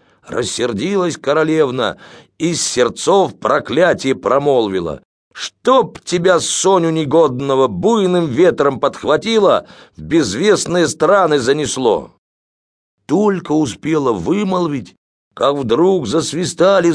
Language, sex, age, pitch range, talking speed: English, male, 50-69, 130-180 Hz, 85 wpm